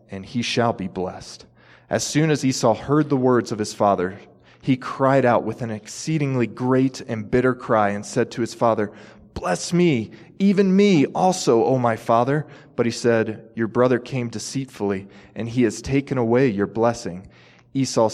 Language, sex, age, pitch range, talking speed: English, male, 20-39, 100-125 Hz, 175 wpm